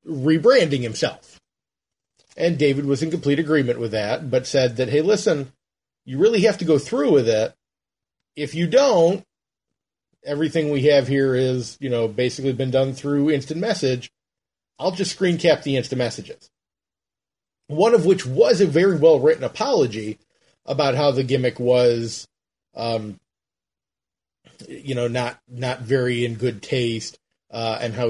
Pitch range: 120-155 Hz